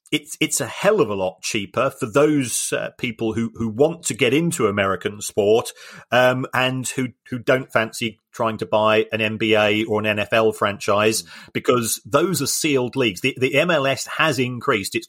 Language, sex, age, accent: English, male, 40-59, British